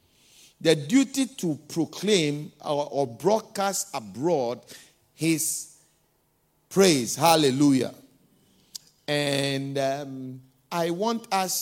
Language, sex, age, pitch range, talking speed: English, male, 50-69, 145-200 Hz, 75 wpm